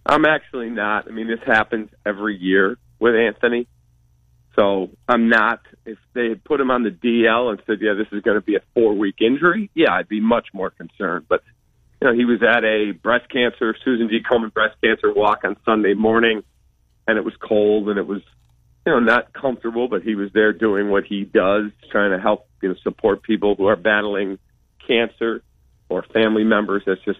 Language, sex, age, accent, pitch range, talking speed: English, male, 40-59, American, 100-120 Hz, 205 wpm